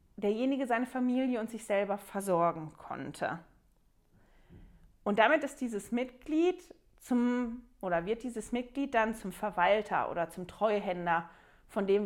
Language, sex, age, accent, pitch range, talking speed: German, female, 30-49, German, 195-250 Hz, 130 wpm